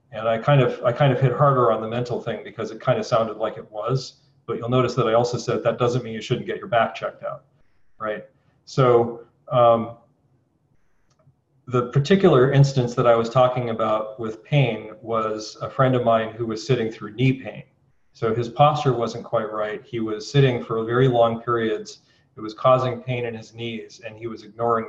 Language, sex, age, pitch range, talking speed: English, male, 40-59, 115-135 Hz, 205 wpm